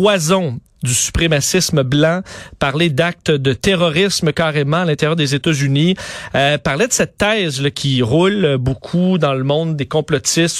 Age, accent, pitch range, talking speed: 40-59, Canadian, 145-180 Hz, 160 wpm